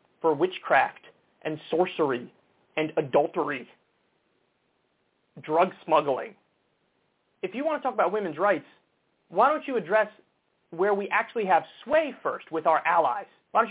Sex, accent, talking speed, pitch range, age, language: male, American, 135 wpm, 155-200 Hz, 30-49, English